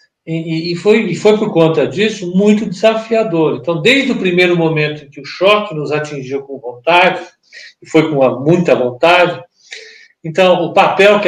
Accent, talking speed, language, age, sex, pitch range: Brazilian, 160 wpm, Portuguese, 60-79, male, 150-205 Hz